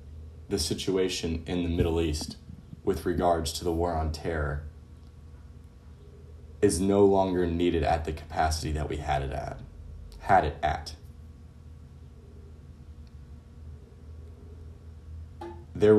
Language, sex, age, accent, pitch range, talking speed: English, male, 30-49, American, 80-90 Hz, 110 wpm